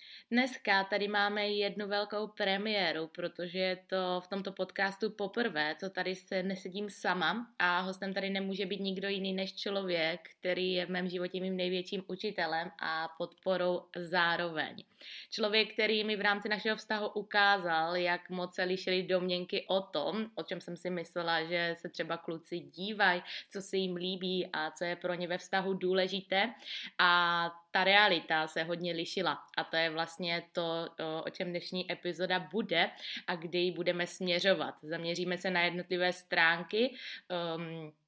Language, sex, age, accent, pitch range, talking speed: Czech, female, 20-39, native, 170-195 Hz, 160 wpm